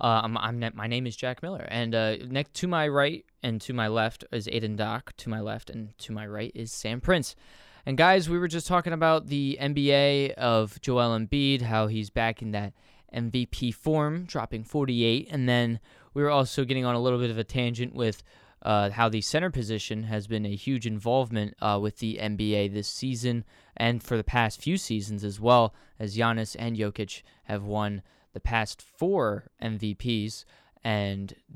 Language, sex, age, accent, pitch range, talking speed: English, male, 20-39, American, 110-130 Hz, 190 wpm